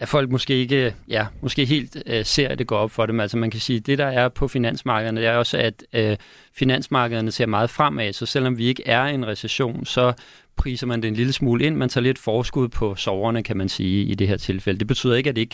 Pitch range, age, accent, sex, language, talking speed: 105-125 Hz, 30-49, native, male, Danish, 265 wpm